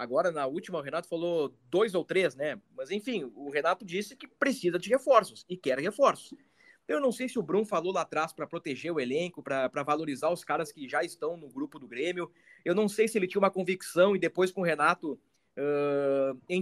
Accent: Brazilian